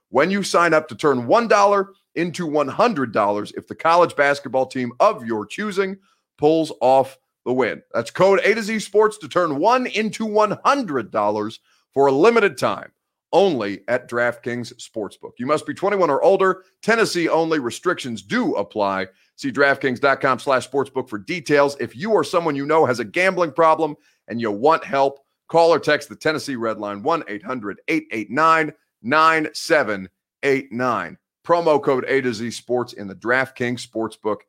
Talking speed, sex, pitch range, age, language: 160 wpm, male, 125-180 Hz, 30-49, English